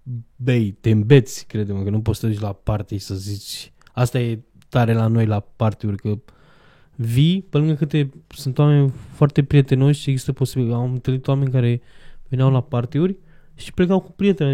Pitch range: 125-150 Hz